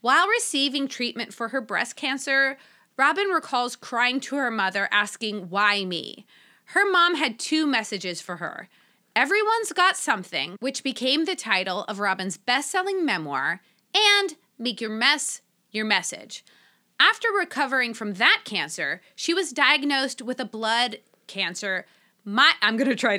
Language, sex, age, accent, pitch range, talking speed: English, female, 30-49, American, 210-285 Hz, 145 wpm